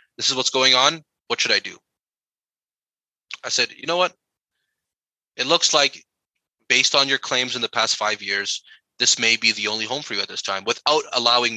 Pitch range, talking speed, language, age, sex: 115-160 Hz, 200 wpm, English, 20-39, male